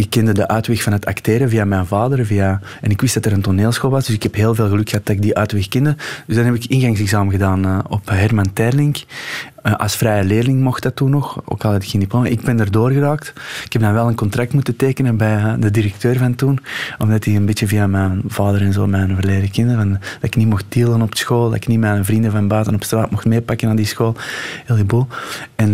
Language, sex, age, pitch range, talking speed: Dutch, male, 20-39, 105-125 Hz, 255 wpm